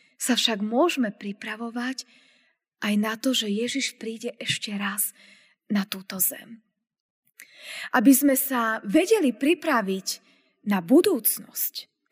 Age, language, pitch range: 20-39, Slovak, 210-275 Hz